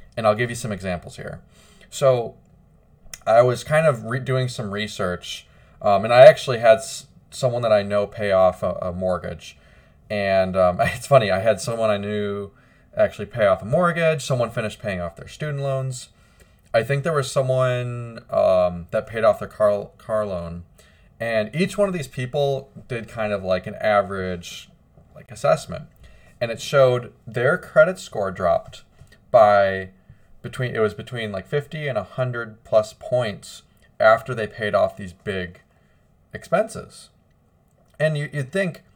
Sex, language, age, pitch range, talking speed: male, English, 20-39, 100-140 Hz, 165 wpm